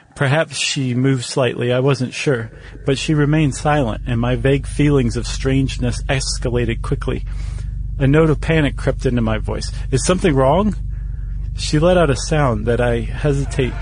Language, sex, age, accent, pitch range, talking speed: English, male, 40-59, American, 120-145 Hz, 165 wpm